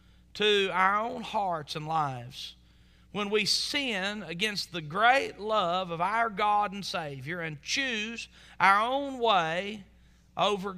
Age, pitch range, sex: 40-59, 160-205 Hz, male